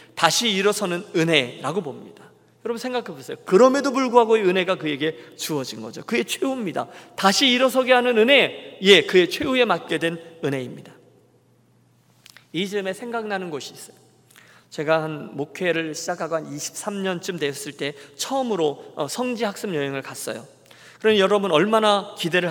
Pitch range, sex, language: 145-205 Hz, male, Korean